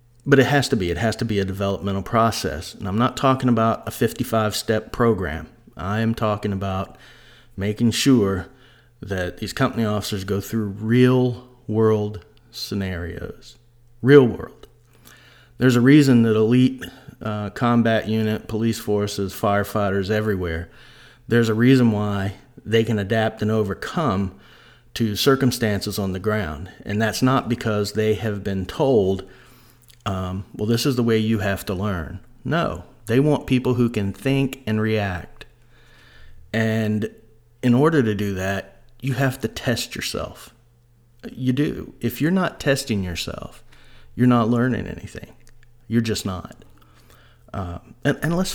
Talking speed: 145 wpm